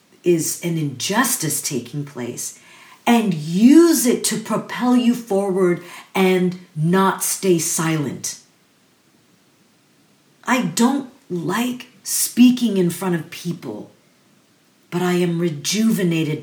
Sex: female